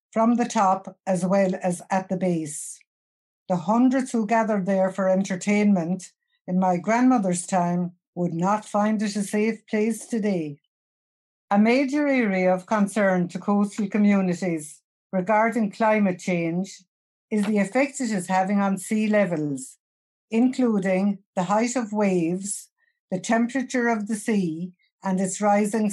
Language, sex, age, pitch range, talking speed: English, female, 60-79, 180-220 Hz, 140 wpm